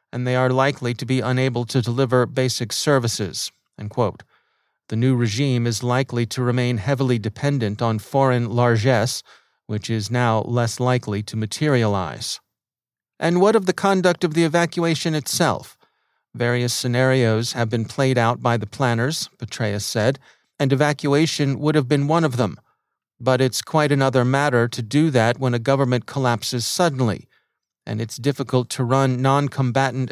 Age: 40-59